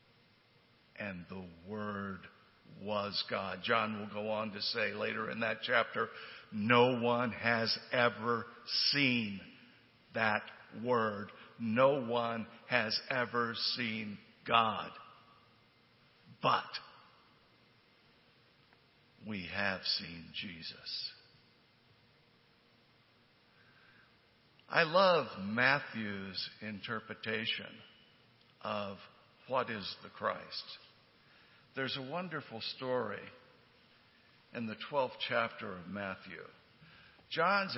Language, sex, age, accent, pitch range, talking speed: English, male, 60-79, American, 110-150 Hz, 85 wpm